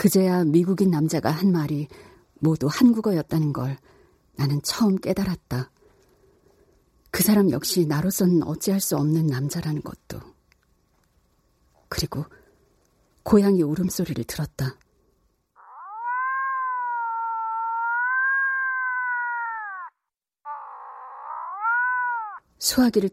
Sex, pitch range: female, 160-260 Hz